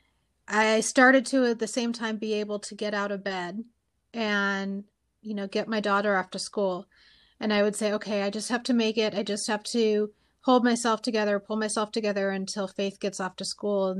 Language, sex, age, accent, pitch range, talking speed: English, female, 30-49, American, 195-220 Hz, 220 wpm